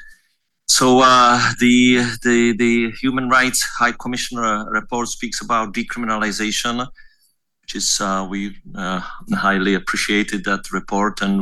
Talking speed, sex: 120 wpm, male